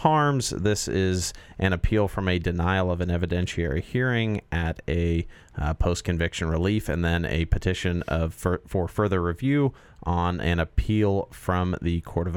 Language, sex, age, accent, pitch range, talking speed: English, male, 40-59, American, 85-100 Hz, 160 wpm